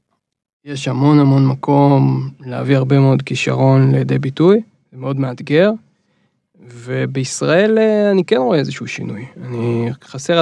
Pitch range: 125-145 Hz